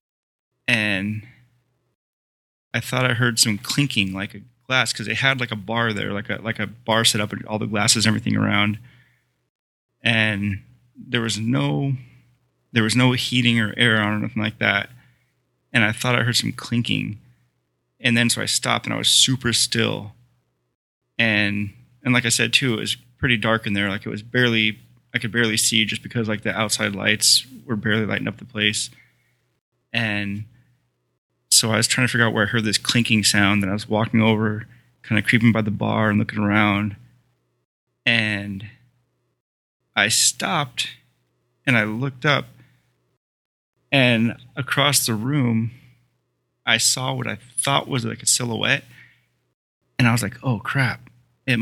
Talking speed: 175 wpm